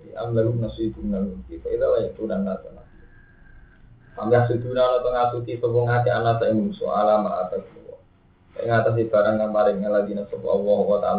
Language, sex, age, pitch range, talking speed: Indonesian, male, 20-39, 100-140 Hz, 160 wpm